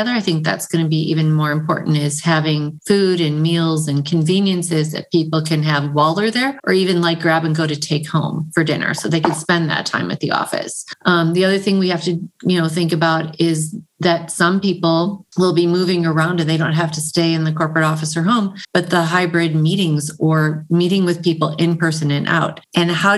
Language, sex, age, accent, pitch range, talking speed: English, female, 30-49, American, 155-180 Hz, 230 wpm